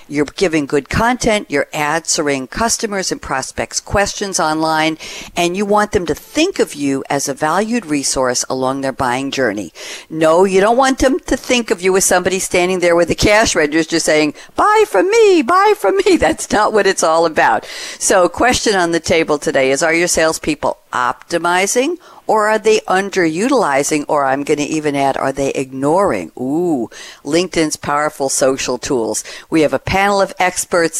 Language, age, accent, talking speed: English, 60-79, American, 180 wpm